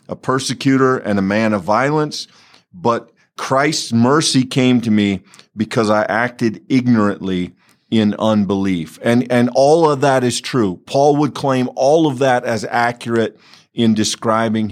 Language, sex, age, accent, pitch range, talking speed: English, male, 50-69, American, 110-140 Hz, 145 wpm